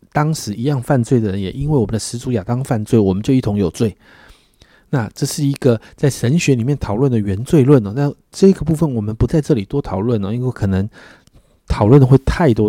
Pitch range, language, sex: 110-155 Hz, Chinese, male